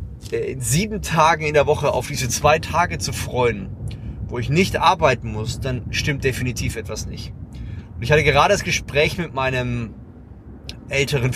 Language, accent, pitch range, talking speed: German, German, 115-145 Hz, 165 wpm